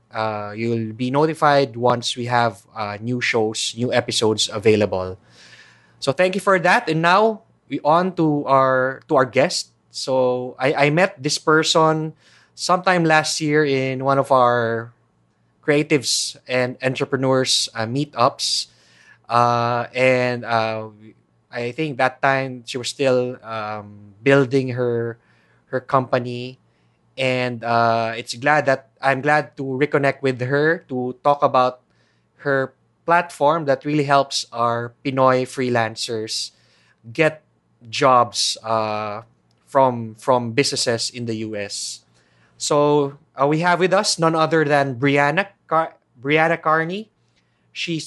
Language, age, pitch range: English, 20-39, 120-150 Hz